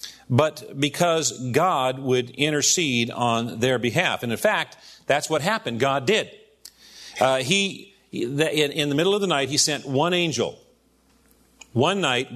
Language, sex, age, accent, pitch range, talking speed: English, male, 50-69, American, 125-160 Hz, 145 wpm